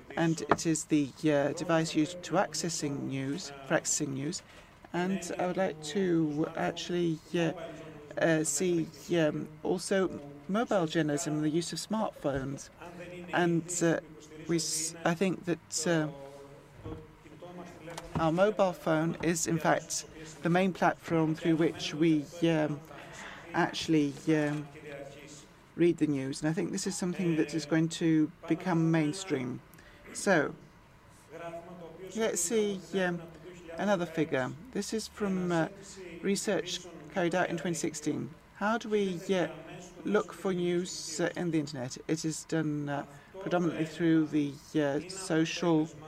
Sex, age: female, 40-59